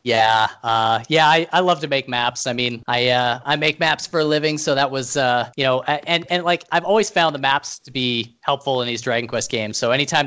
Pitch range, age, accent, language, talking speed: 115-145 Hz, 30-49, American, English, 255 wpm